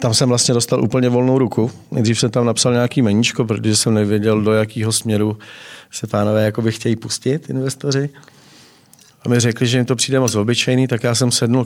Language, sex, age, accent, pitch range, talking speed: Czech, male, 40-59, native, 110-125 Hz, 200 wpm